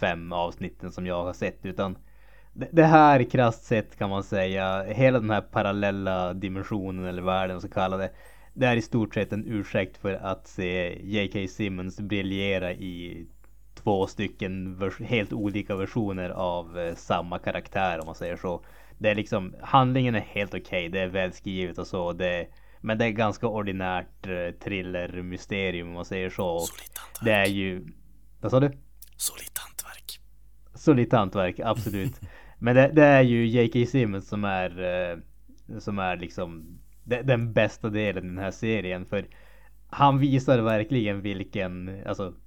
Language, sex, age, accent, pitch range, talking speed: Swedish, male, 20-39, Norwegian, 95-115 Hz, 155 wpm